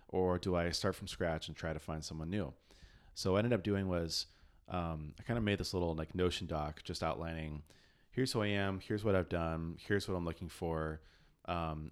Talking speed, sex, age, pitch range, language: 225 wpm, male, 30-49, 85-100 Hz, English